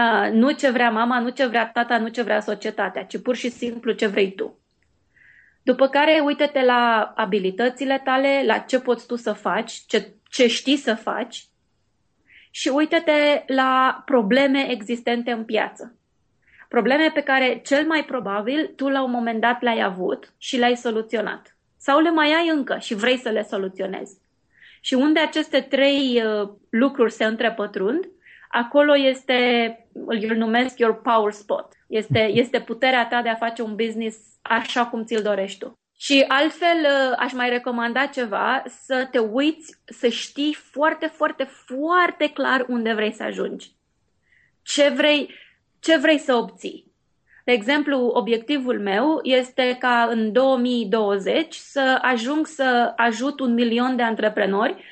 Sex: female